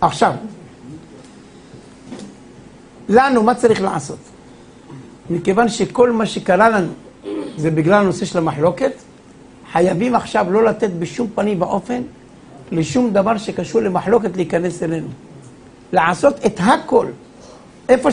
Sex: male